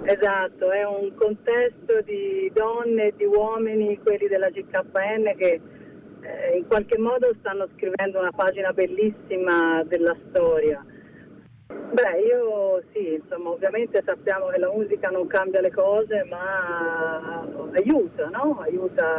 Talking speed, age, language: 130 wpm, 40-59, Italian